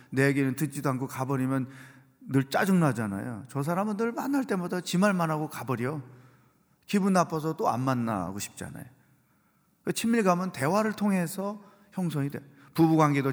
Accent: native